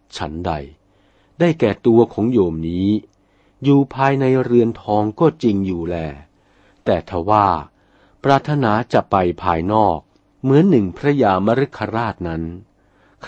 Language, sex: Thai, male